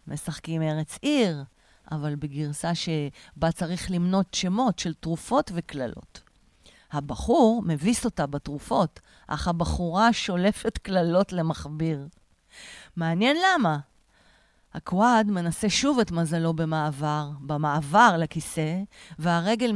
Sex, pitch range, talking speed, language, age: female, 150-215 Hz, 95 wpm, Hebrew, 50-69